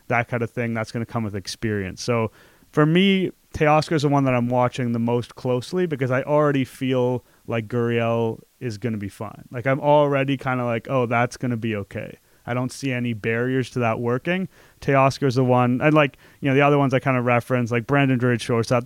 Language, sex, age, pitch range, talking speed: English, male, 30-49, 110-130 Hz, 230 wpm